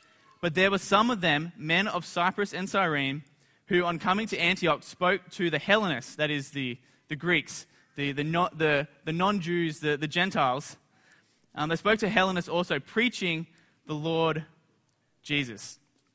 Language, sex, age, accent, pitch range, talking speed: English, male, 20-39, Australian, 150-195 Hz, 165 wpm